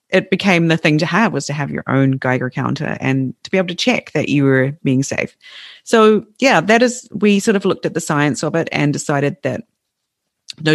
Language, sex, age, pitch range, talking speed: English, female, 40-59, 130-160 Hz, 230 wpm